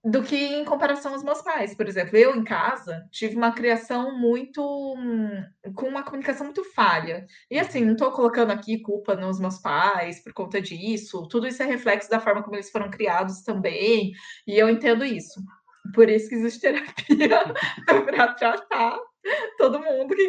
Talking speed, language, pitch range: 175 wpm, Portuguese, 210-275 Hz